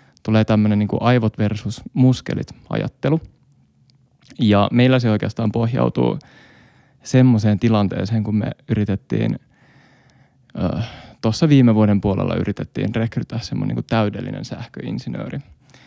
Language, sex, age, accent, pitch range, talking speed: Finnish, male, 20-39, native, 105-125 Hz, 95 wpm